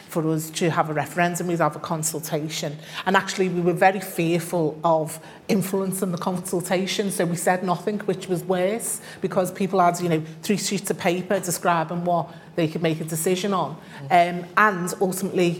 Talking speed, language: 175 wpm, English